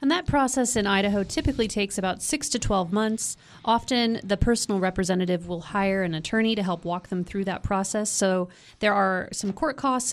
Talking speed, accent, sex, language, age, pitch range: 195 wpm, American, female, English, 30-49, 190-230 Hz